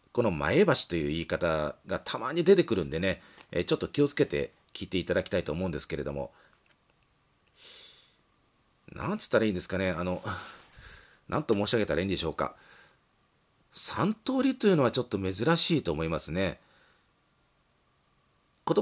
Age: 40-59